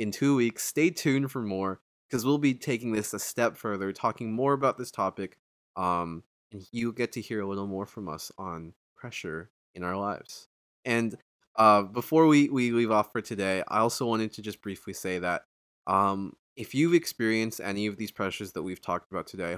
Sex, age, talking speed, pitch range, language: male, 20-39, 200 wpm, 95-115 Hz, English